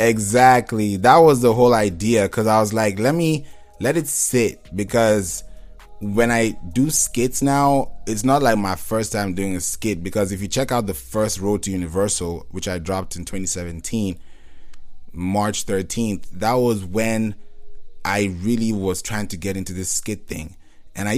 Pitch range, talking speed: 95-115 Hz, 175 wpm